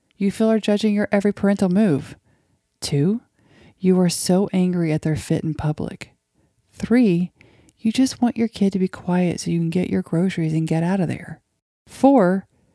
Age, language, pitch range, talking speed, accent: 40-59, English, 155-205 Hz, 185 wpm, American